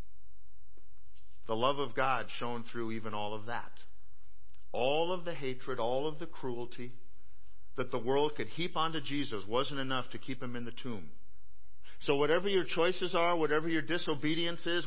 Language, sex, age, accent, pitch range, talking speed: English, male, 50-69, American, 95-155 Hz, 170 wpm